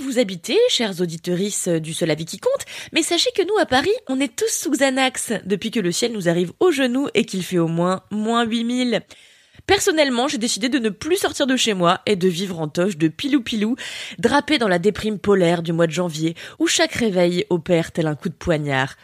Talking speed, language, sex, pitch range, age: 220 wpm, French, female, 175-275 Hz, 20-39